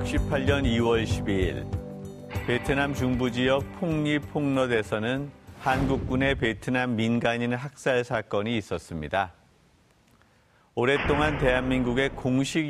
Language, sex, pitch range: Korean, male, 115-145 Hz